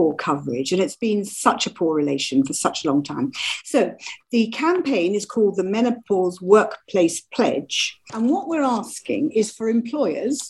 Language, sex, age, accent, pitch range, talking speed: English, female, 50-69, British, 175-240 Hz, 165 wpm